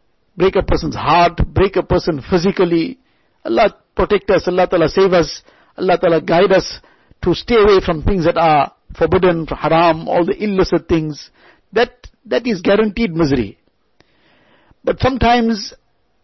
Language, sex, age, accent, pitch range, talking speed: English, male, 50-69, Indian, 170-215 Hz, 145 wpm